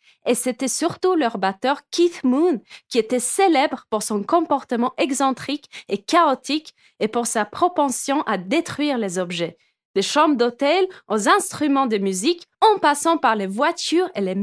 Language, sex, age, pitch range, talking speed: French, female, 20-39, 220-320 Hz, 160 wpm